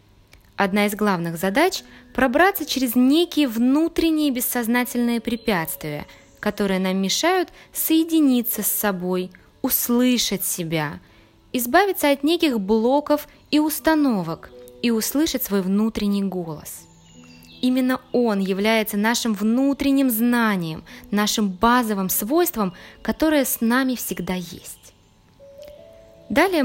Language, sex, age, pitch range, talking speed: Russian, female, 20-39, 185-280 Hz, 100 wpm